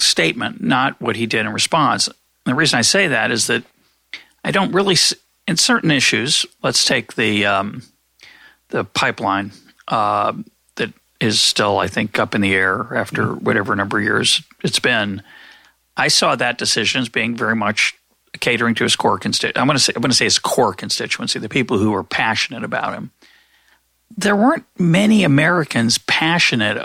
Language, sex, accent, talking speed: English, male, American, 175 wpm